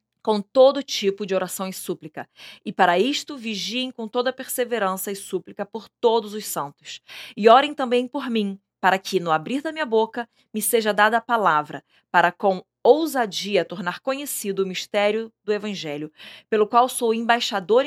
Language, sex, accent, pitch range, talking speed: Portuguese, female, Brazilian, 185-235 Hz, 170 wpm